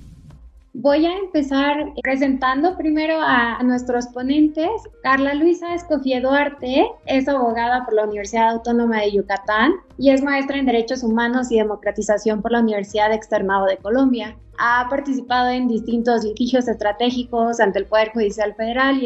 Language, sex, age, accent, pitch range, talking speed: Spanish, female, 20-39, Mexican, 215-270 Hz, 150 wpm